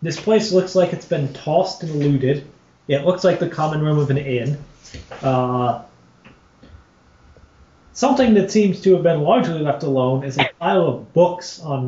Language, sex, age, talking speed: English, male, 30-49, 170 wpm